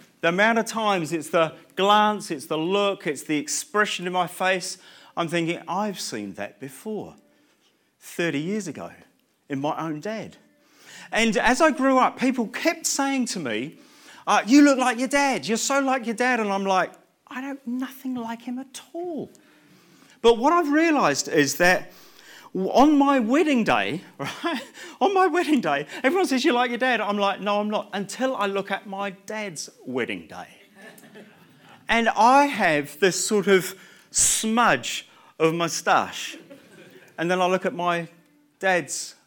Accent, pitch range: British, 175-255 Hz